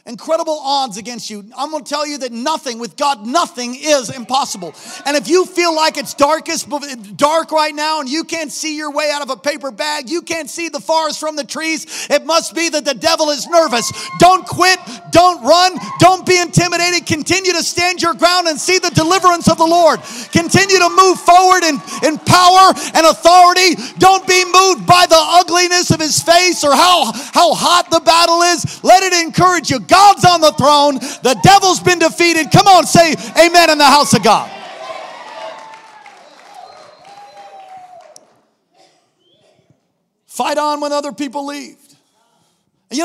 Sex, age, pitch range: male, 40-59, 280-350 Hz